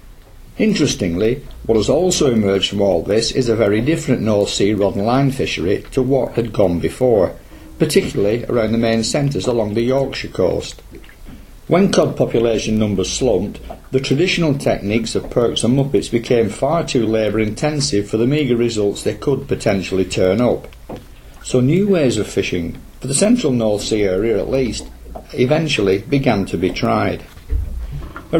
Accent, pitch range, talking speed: British, 100-135 Hz, 165 wpm